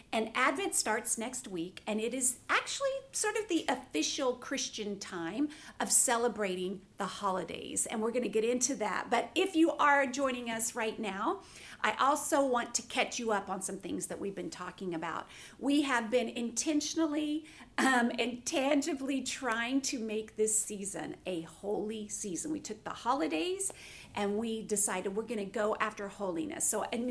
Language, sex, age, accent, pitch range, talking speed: English, female, 50-69, American, 215-275 Hz, 175 wpm